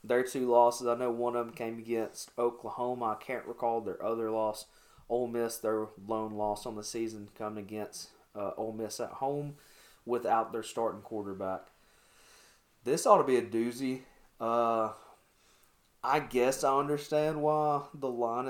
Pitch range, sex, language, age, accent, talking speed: 110-125 Hz, male, English, 20-39, American, 160 wpm